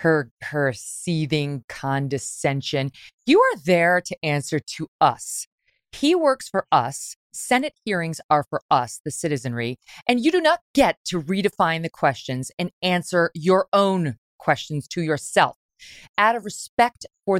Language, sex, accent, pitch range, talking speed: English, female, American, 140-180 Hz, 145 wpm